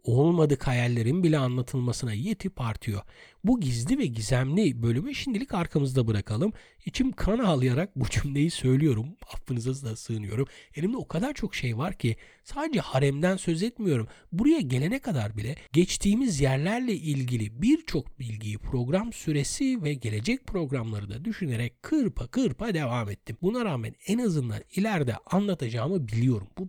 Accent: native